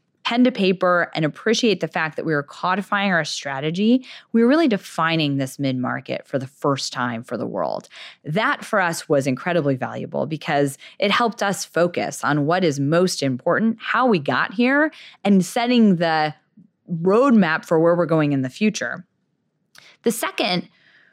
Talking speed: 170 wpm